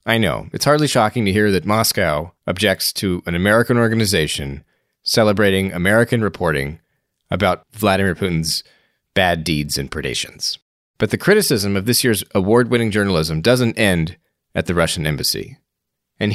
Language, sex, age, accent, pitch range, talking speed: English, male, 30-49, American, 90-120 Hz, 145 wpm